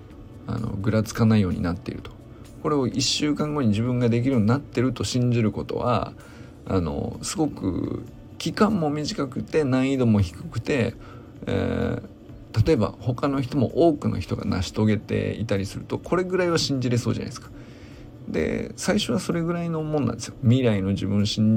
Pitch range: 105-125 Hz